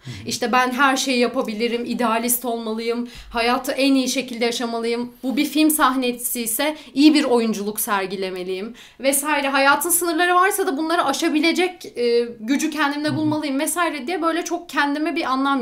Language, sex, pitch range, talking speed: Turkish, female, 240-315 Hz, 145 wpm